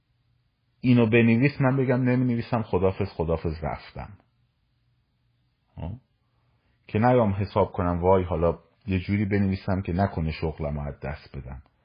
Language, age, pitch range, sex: Persian, 40-59, 90-120 Hz, male